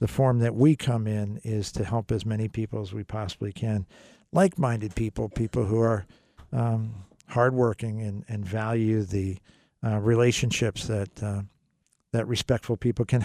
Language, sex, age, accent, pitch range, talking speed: English, male, 50-69, American, 110-130 Hz, 160 wpm